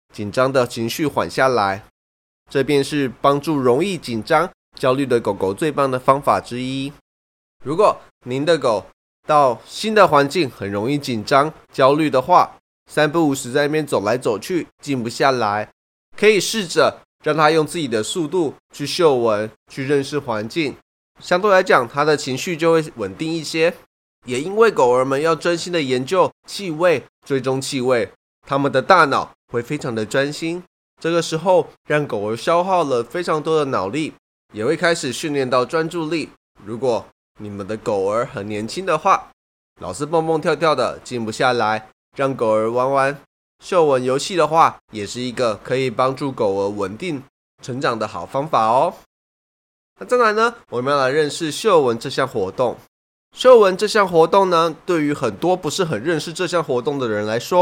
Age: 20-39